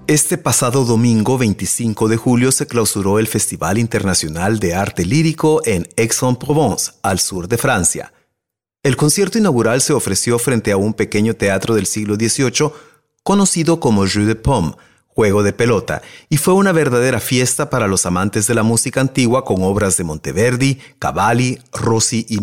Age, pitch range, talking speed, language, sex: 30-49, 105-130 Hz, 160 wpm, Spanish, male